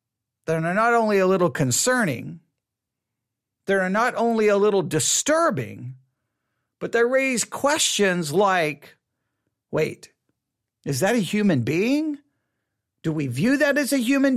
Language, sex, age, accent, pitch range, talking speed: English, male, 50-69, American, 175-255 Hz, 125 wpm